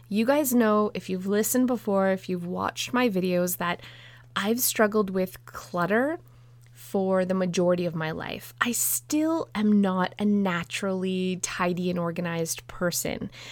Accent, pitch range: American, 175-210 Hz